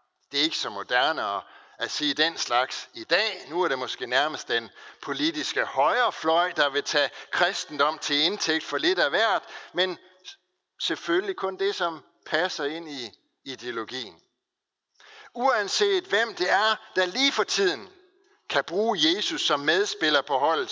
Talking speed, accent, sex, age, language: 155 wpm, native, male, 60-79, Danish